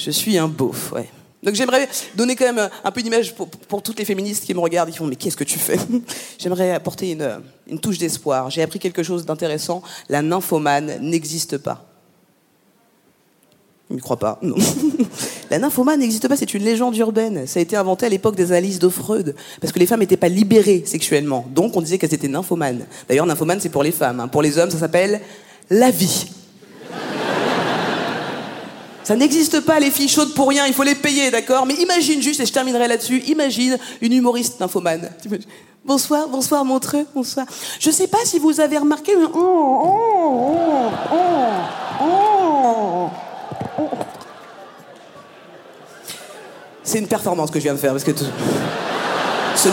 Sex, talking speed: female, 180 wpm